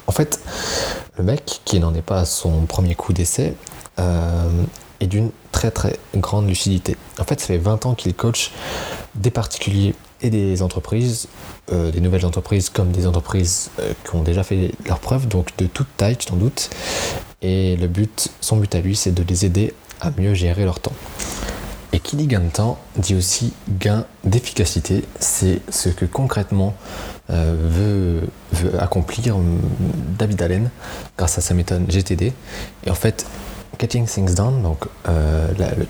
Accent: French